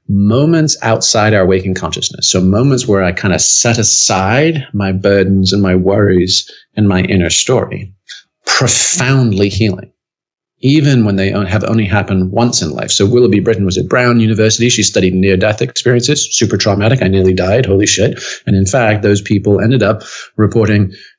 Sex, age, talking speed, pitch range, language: male, 40-59, 165 wpm, 100-120 Hz, English